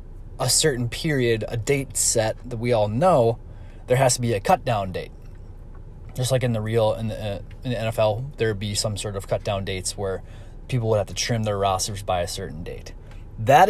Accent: American